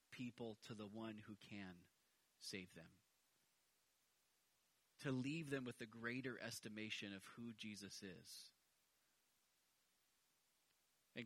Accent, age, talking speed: American, 30-49, 105 wpm